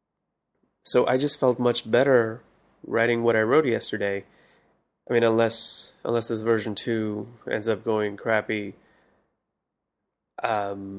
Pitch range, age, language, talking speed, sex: 110-125 Hz, 20-39, English, 125 wpm, male